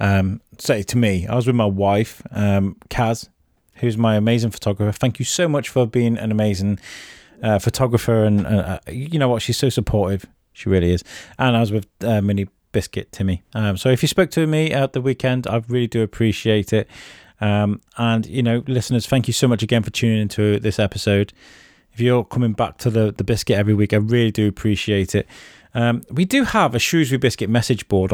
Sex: male